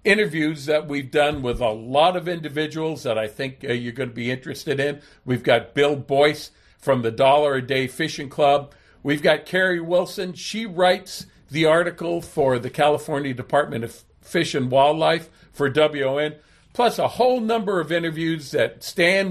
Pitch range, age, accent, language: 140-180 Hz, 50-69, American, English